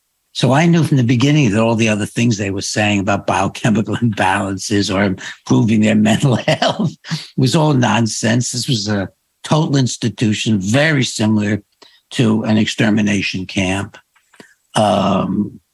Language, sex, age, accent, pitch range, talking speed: English, male, 60-79, American, 100-120 Hz, 140 wpm